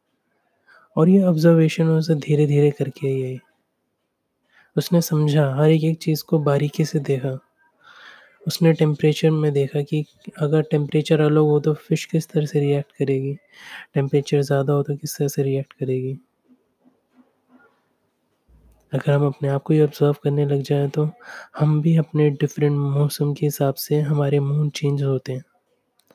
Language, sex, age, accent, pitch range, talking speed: Hindi, male, 20-39, native, 140-155 Hz, 150 wpm